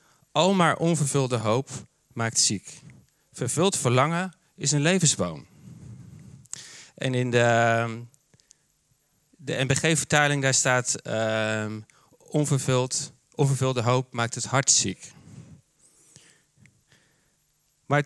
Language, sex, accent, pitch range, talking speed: Dutch, male, Dutch, 125-155 Hz, 85 wpm